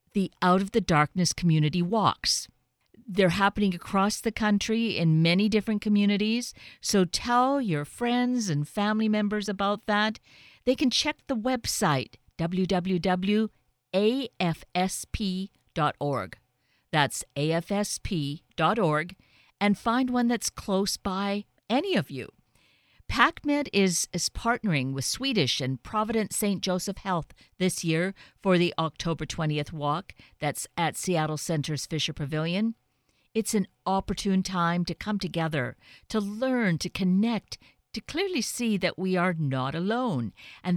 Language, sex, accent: English, female, American